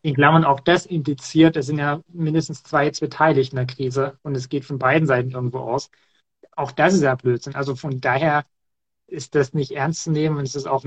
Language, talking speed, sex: German, 225 wpm, male